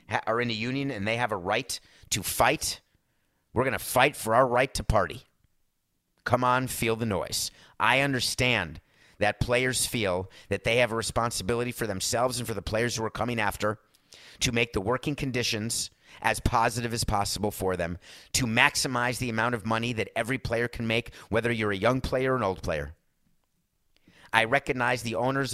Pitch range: 105-130 Hz